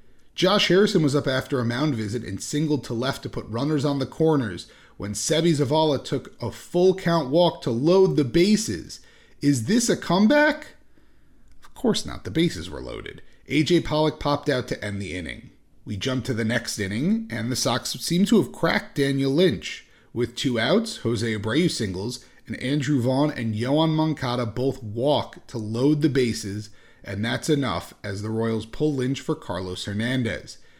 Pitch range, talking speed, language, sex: 115-165 Hz, 180 wpm, English, male